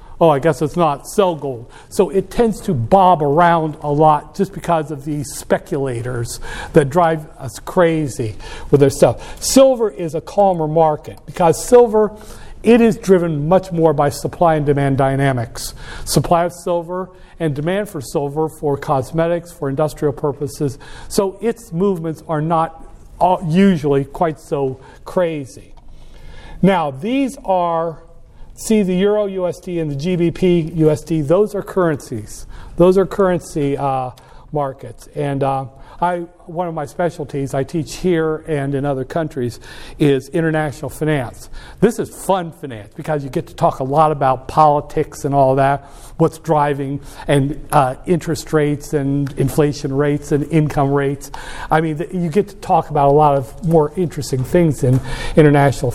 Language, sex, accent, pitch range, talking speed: English, male, American, 140-175 Hz, 155 wpm